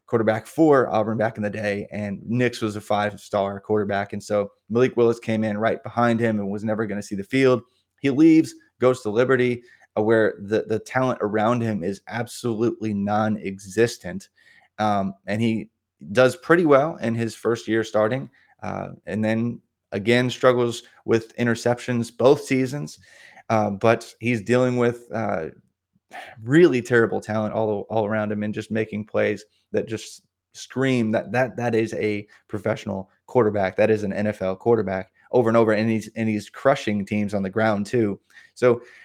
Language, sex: English, male